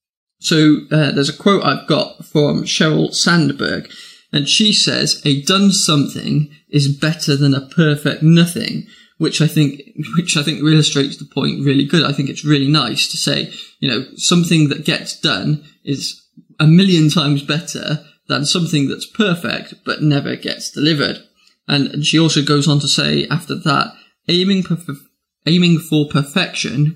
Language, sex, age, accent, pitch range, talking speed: English, male, 20-39, British, 140-165 Hz, 160 wpm